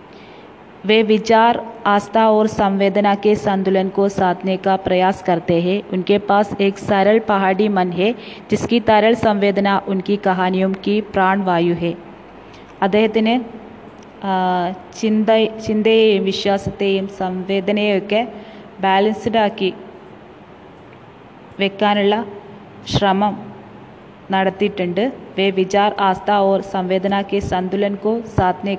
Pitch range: 190-215 Hz